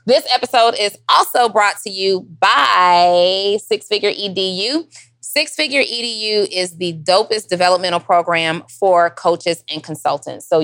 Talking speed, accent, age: 135 wpm, American, 20-39